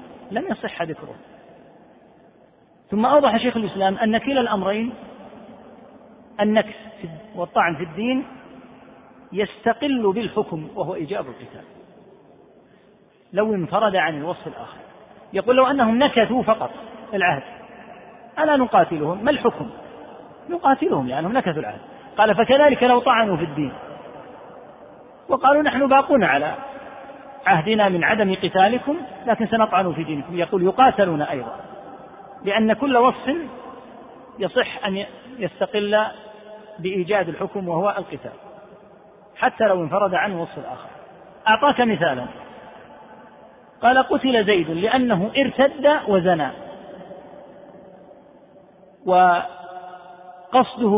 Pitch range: 185-255 Hz